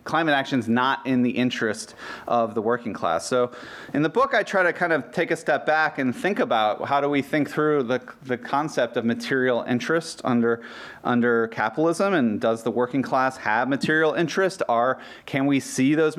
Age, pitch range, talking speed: 30-49, 120-145 Hz, 200 wpm